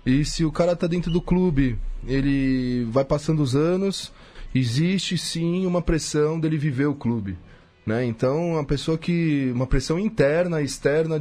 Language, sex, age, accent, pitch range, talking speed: Portuguese, male, 20-39, Brazilian, 135-170 Hz, 160 wpm